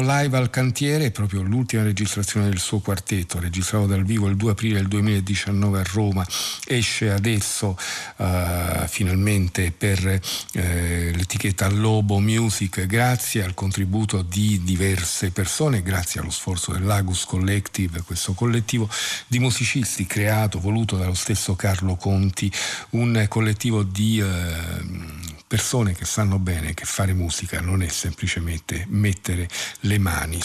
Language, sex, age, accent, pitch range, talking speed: Italian, male, 50-69, native, 95-110 Hz, 125 wpm